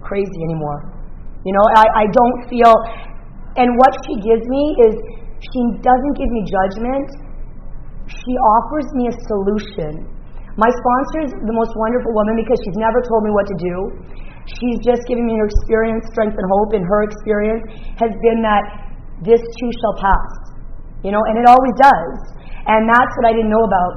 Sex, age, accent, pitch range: female, 30-49, American, 195-230 Hz